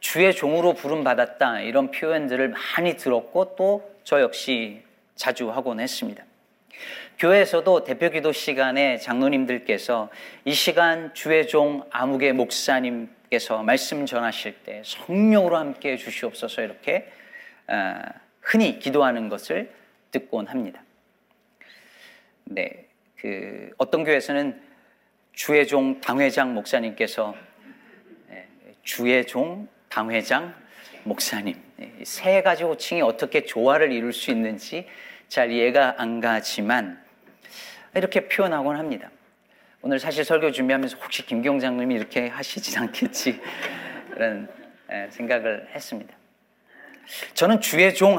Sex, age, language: male, 40-59, Korean